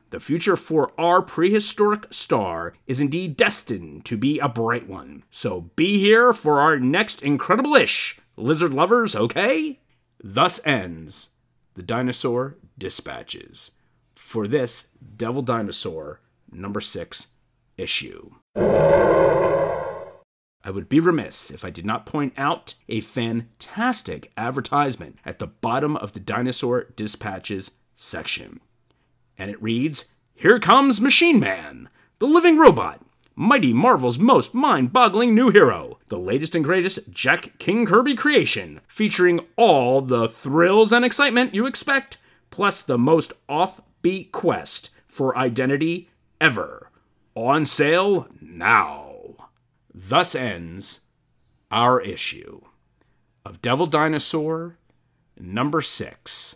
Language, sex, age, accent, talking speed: English, male, 30-49, American, 115 wpm